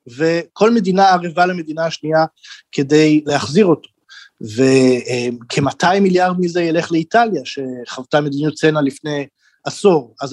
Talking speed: 110 wpm